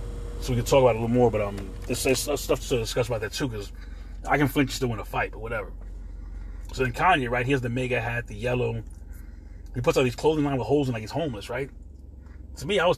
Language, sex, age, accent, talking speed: English, male, 30-49, American, 270 wpm